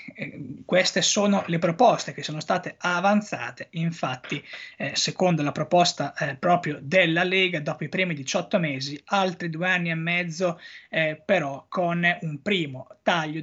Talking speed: 150 wpm